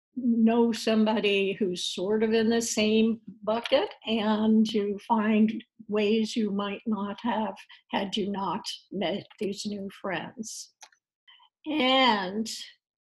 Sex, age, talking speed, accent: female, 60-79, 115 wpm, American